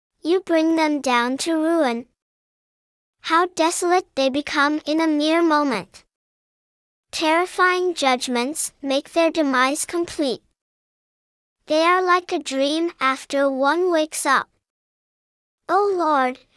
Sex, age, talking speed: male, 10-29, 110 wpm